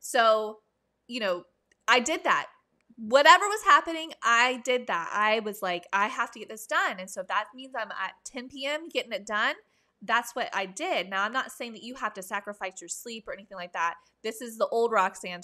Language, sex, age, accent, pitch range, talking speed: English, female, 20-39, American, 195-255 Hz, 220 wpm